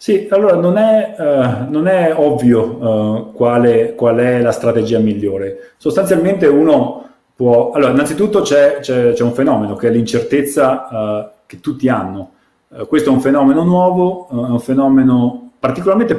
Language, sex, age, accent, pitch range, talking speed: Italian, male, 40-59, native, 110-135 Hz, 125 wpm